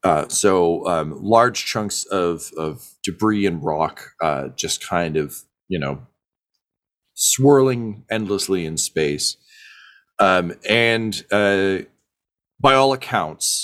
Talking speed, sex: 115 wpm, male